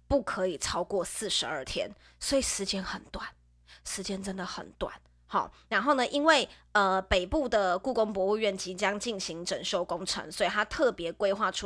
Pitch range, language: 195-290 Hz, Chinese